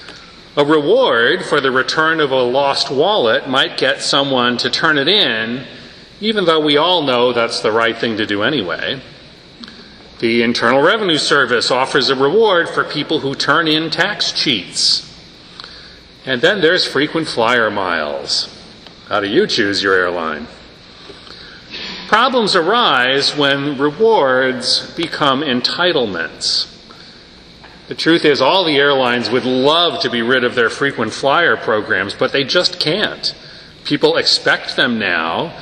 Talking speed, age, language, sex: 140 wpm, 40-59, English, male